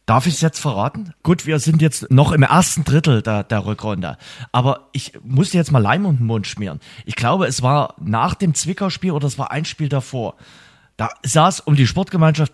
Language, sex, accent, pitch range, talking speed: German, male, German, 120-155 Hz, 205 wpm